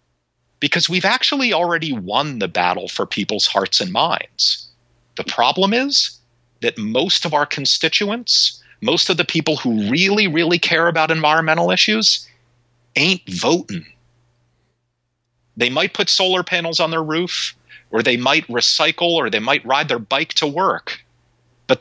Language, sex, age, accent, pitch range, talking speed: English, male, 40-59, American, 115-165 Hz, 150 wpm